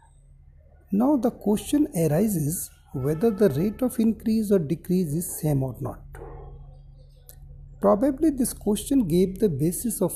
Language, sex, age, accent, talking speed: Hindi, male, 60-79, native, 130 wpm